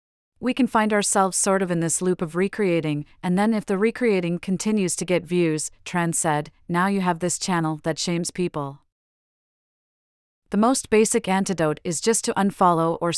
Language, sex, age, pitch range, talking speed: English, female, 40-59, 160-200 Hz, 180 wpm